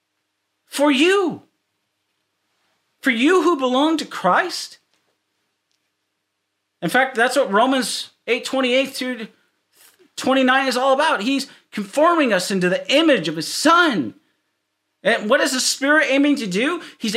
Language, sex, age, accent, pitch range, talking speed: English, male, 40-59, American, 170-260 Hz, 135 wpm